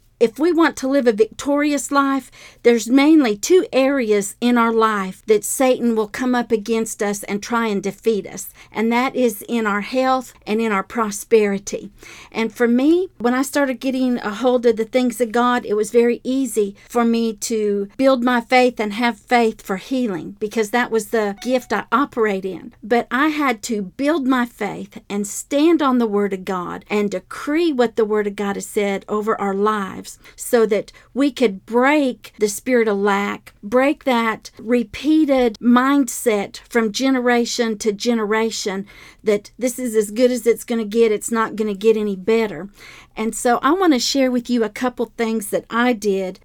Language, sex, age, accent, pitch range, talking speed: English, female, 50-69, American, 210-255 Hz, 190 wpm